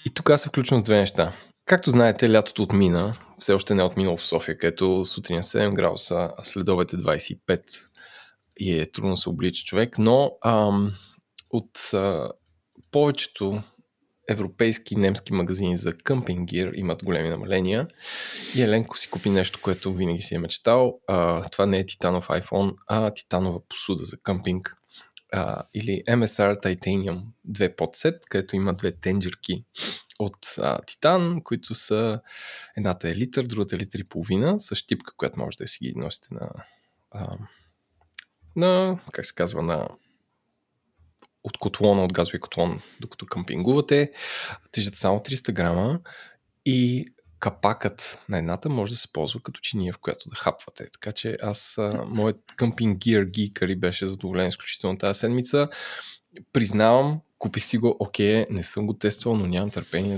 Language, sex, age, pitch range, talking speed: Bulgarian, male, 20-39, 95-115 Hz, 150 wpm